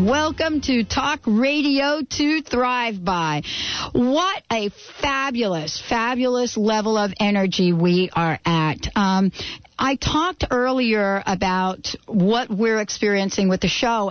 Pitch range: 195-250 Hz